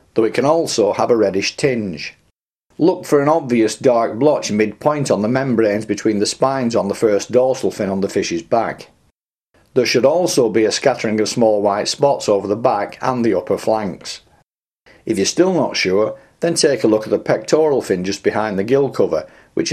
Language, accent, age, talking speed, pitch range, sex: English, British, 50-69, 200 wpm, 105-135 Hz, male